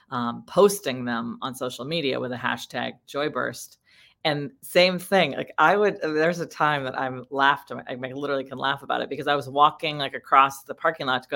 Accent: American